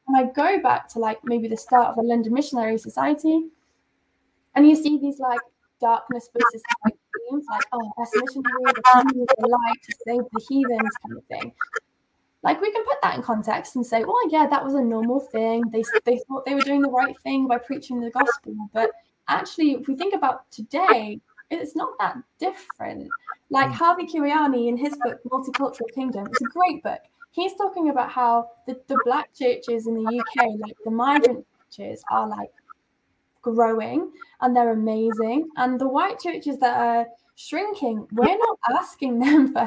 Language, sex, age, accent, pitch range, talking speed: English, female, 10-29, British, 235-295 Hz, 175 wpm